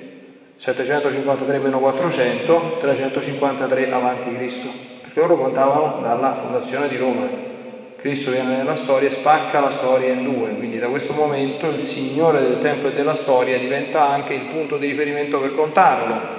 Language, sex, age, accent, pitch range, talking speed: Italian, male, 40-59, native, 130-160 Hz, 150 wpm